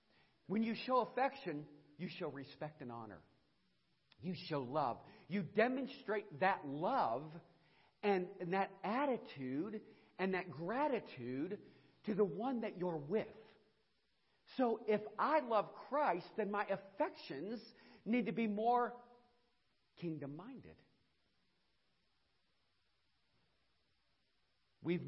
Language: English